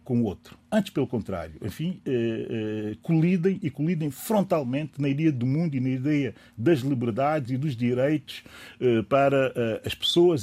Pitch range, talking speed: 120-150 Hz, 175 wpm